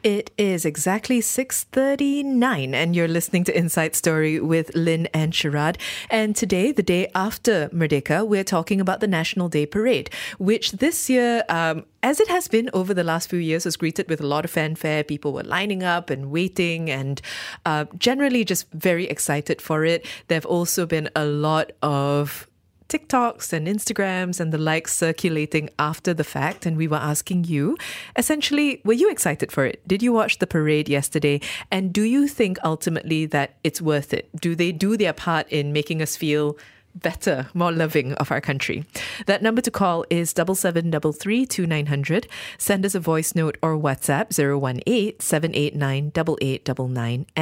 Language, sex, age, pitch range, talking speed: English, female, 20-39, 150-195 Hz, 175 wpm